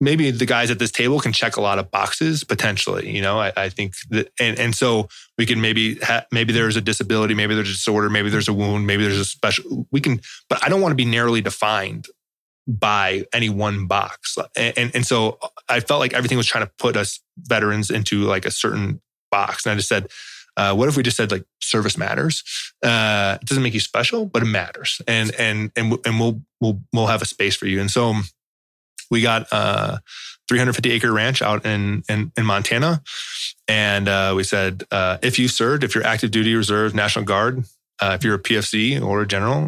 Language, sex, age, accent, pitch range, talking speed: English, male, 20-39, American, 105-120 Hz, 220 wpm